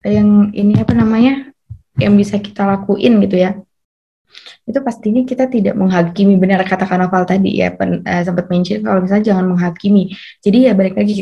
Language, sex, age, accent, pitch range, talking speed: Indonesian, female, 20-39, native, 190-225 Hz, 165 wpm